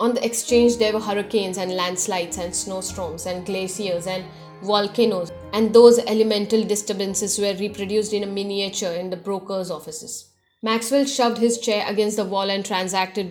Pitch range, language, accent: 190-220 Hz, English, Indian